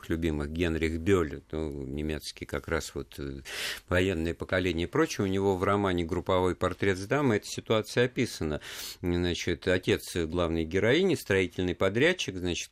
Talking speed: 140 wpm